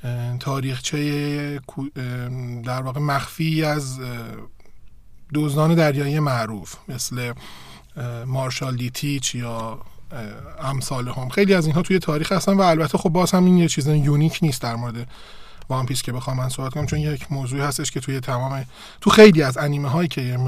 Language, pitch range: Persian, 125-150 Hz